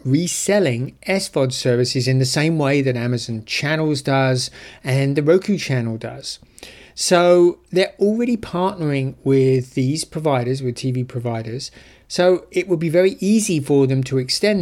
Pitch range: 125-160 Hz